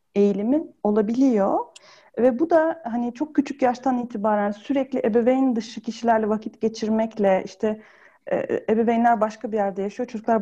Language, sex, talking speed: Turkish, female, 145 wpm